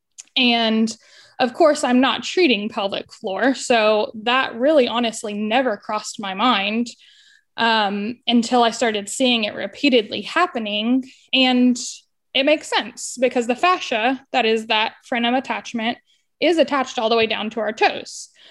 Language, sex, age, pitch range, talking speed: English, female, 10-29, 220-255 Hz, 145 wpm